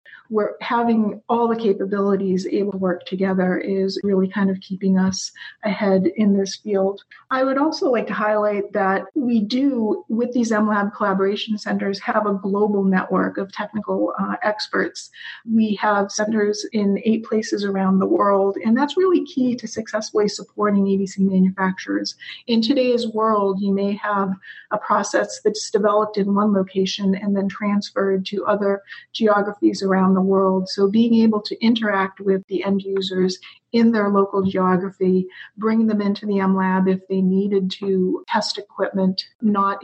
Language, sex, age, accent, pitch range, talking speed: English, female, 40-59, American, 190-215 Hz, 160 wpm